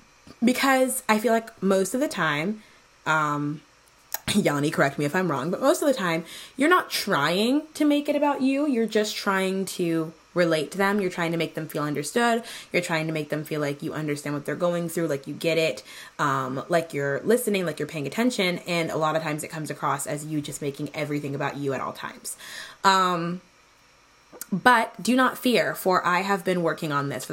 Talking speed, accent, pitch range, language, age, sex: 215 wpm, American, 155-210 Hz, English, 20-39, female